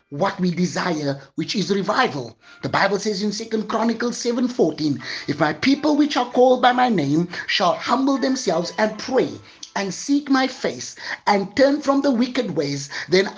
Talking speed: 170 wpm